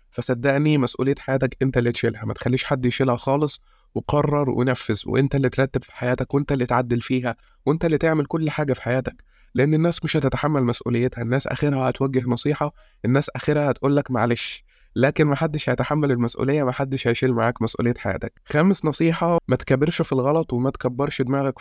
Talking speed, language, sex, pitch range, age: 175 wpm, Arabic, male, 125-145 Hz, 20-39